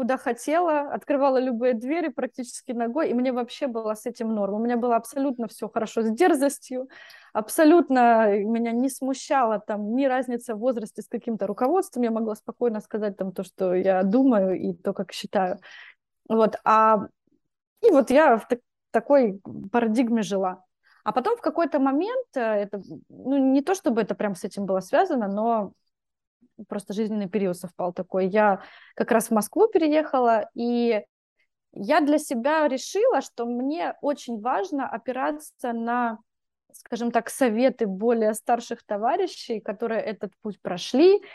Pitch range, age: 215-275 Hz, 20-39